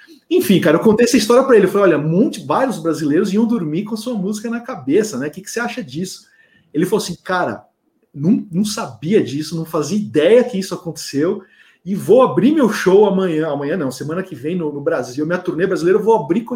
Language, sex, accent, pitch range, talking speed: Portuguese, male, Brazilian, 150-225 Hz, 230 wpm